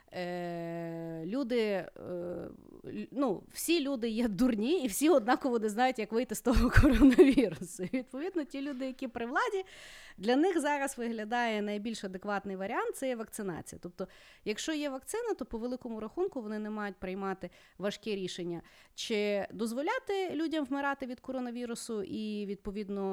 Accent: native